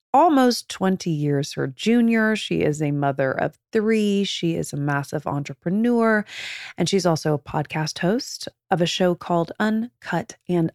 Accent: American